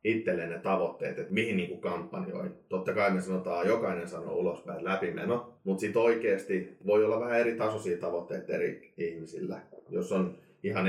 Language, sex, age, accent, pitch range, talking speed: Finnish, male, 30-49, native, 95-120 Hz, 165 wpm